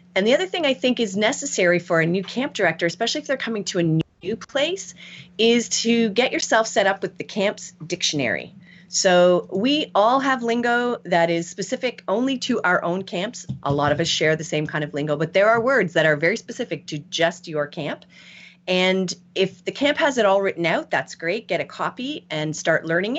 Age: 30-49